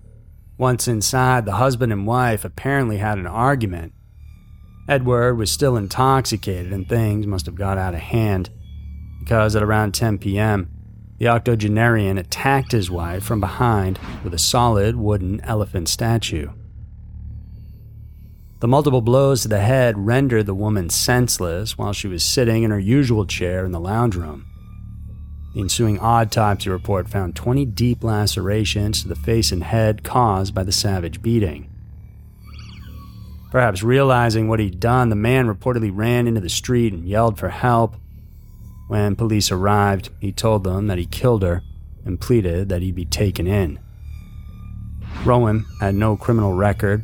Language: English